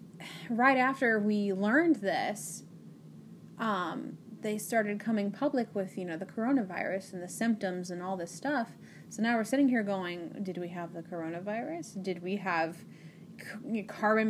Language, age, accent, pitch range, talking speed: English, 30-49, American, 185-230 Hz, 155 wpm